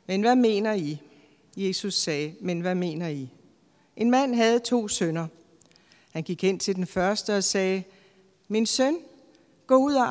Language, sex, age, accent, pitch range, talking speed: Danish, female, 60-79, native, 165-215 Hz, 165 wpm